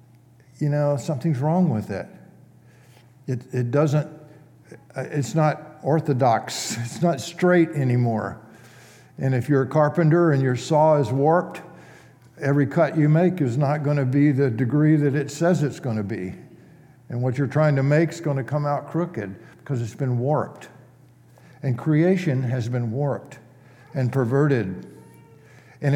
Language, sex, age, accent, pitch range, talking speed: English, male, 60-79, American, 125-155 Hz, 155 wpm